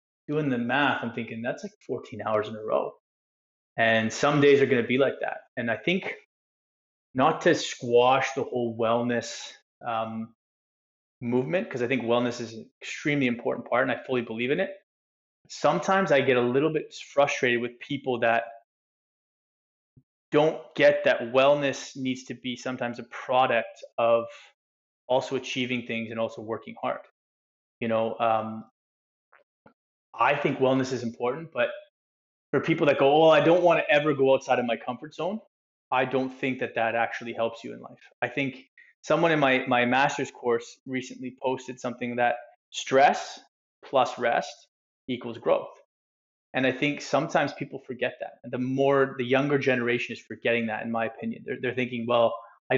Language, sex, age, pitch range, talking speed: English, male, 20-39, 115-135 Hz, 170 wpm